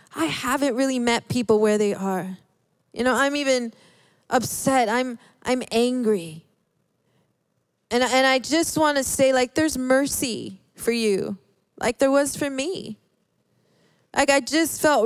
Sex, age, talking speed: female, 20-39, 155 wpm